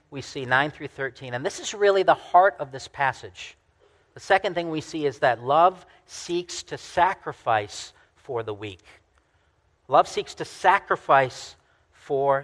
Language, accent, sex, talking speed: English, American, male, 160 wpm